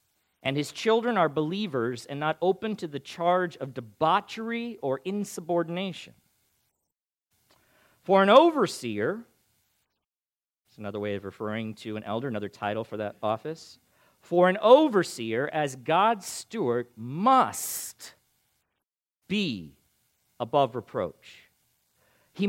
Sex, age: male, 40-59